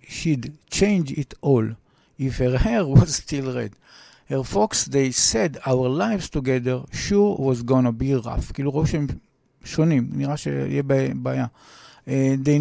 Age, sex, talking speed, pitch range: 60-79, male, 120 wpm, 130-155 Hz